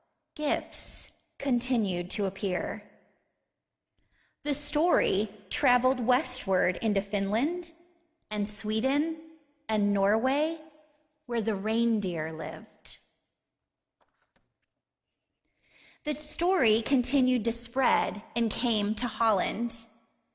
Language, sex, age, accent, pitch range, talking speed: English, female, 30-49, American, 210-270 Hz, 80 wpm